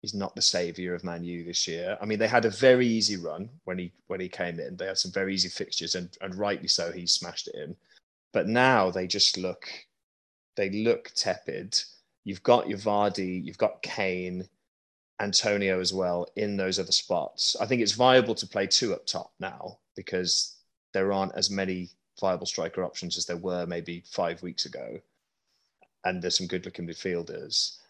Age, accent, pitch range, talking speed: 20-39, British, 90-105 Hz, 190 wpm